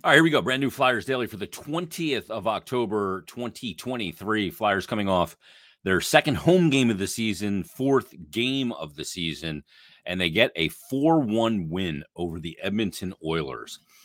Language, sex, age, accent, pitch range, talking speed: English, male, 40-59, American, 85-125 Hz, 170 wpm